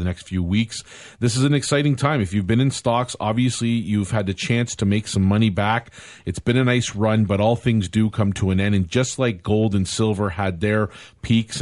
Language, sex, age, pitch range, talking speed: English, male, 40-59, 95-115 Hz, 240 wpm